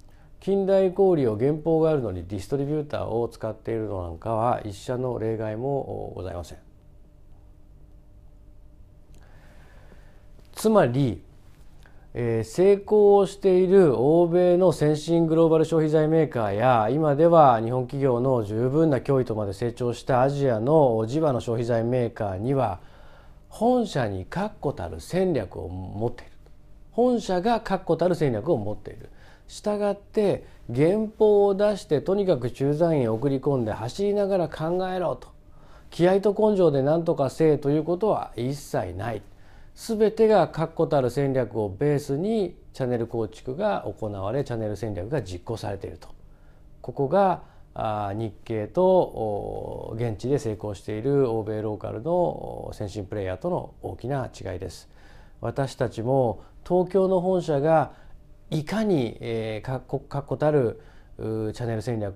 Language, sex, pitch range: Japanese, male, 105-160 Hz